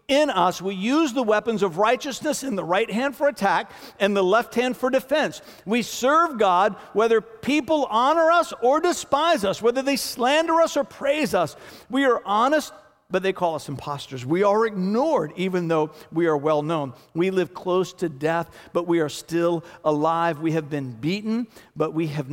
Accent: American